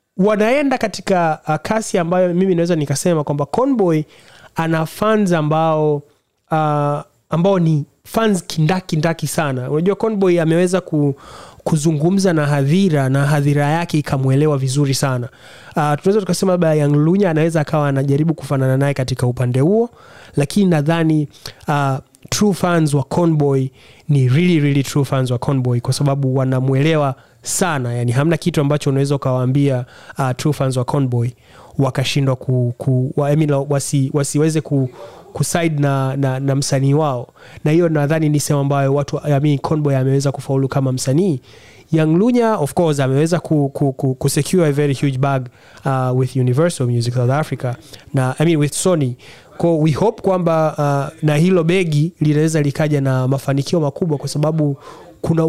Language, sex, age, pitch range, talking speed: Swahili, male, 30-49, 135-165 Hz, 150 wpm